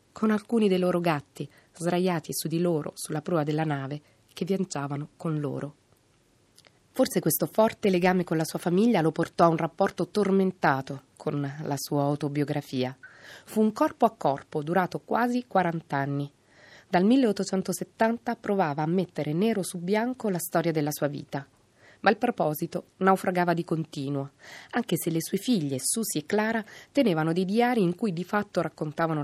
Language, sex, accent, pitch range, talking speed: Italian, female, native, 150-195 Hz, 160 wpm